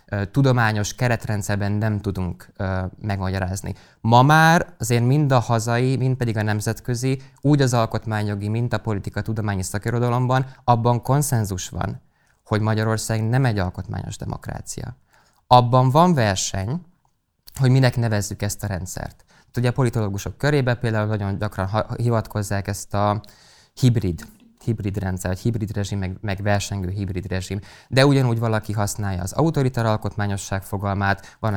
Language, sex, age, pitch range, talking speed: Hungarian, male, 20-39, 100-125 Hz, 140 wpm